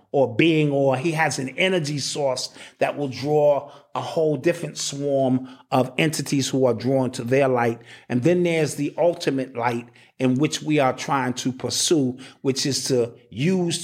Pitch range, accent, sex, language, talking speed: 125-170 Hz, American, male, English, 175 wpm